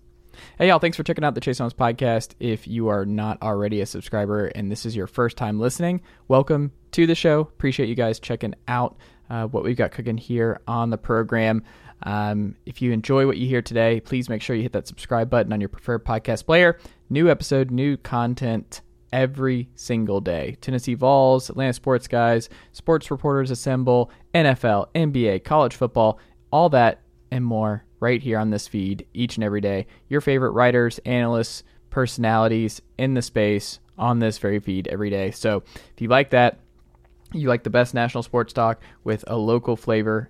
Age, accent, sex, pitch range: 20-39, American, male, 110-130 Hz